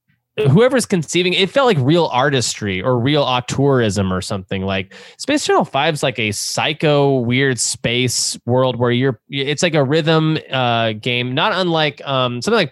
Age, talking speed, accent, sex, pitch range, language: 20-39, 170 wpm, American, male, 110-160 Hz, English